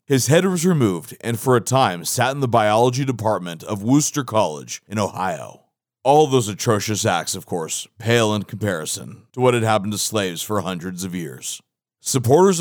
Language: English